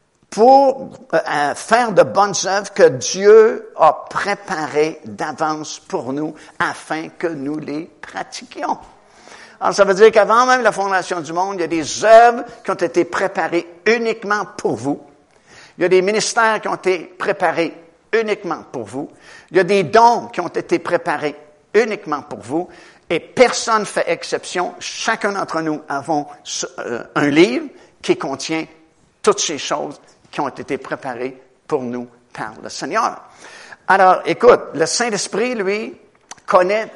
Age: 60-79